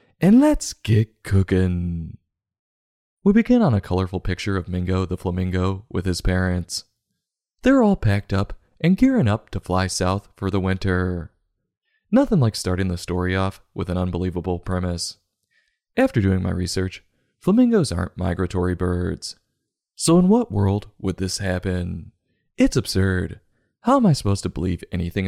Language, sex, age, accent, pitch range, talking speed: English, male, 20-39, American, 90-110 Hz, 150 wpm